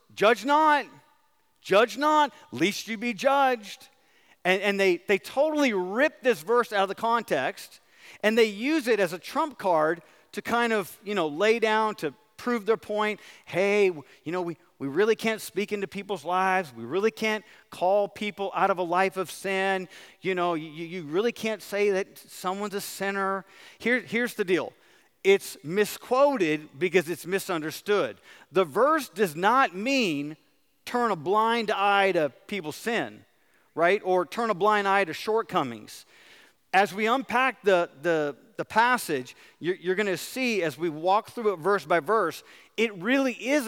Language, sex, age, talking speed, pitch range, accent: English, male, 40-59, 170 wpm, 185-245 Hz, American